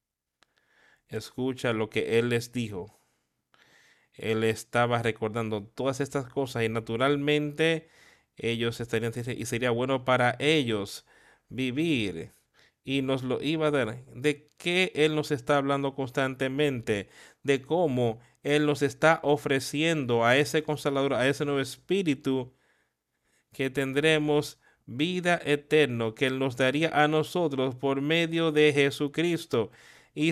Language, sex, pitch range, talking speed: Spanish, male, 120-150 Hz, 125 wpm